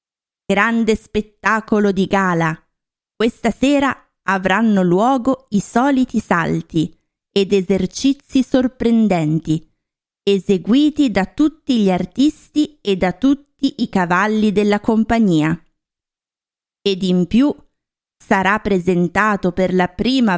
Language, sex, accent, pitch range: Italian, female, native, 185-245 Hz